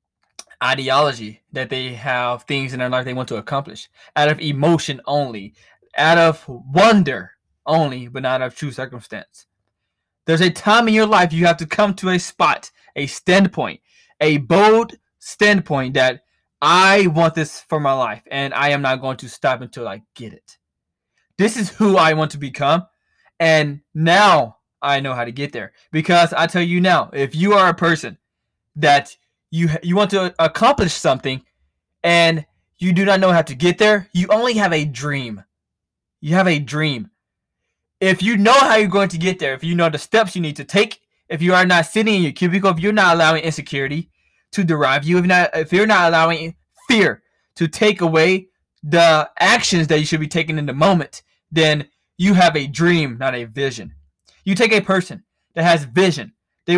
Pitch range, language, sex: 140-185 Hz, English, male